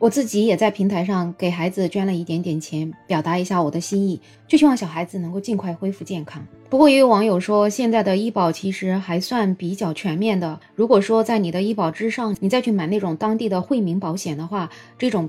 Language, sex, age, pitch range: Chinese, female, 20-39, 170-220 Hz